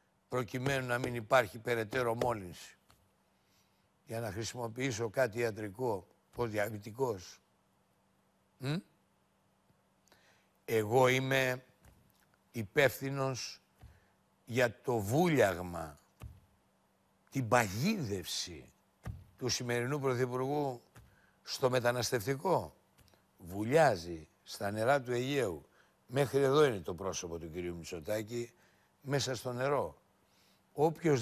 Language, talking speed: Greek, 80 wpm